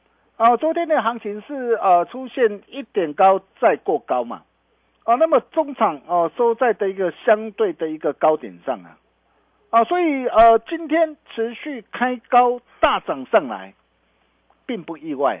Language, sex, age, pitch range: Chinese, male, 50-69, 165-245 Hz